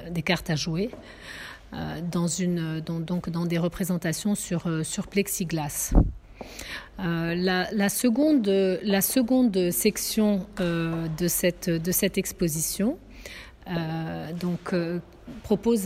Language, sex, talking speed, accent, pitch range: French, female, 120 wpm, French, 165-195 Hz